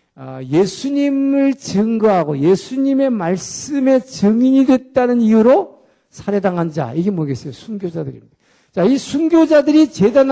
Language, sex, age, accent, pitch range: Korean, male, 50-69, native, 175-245 Hz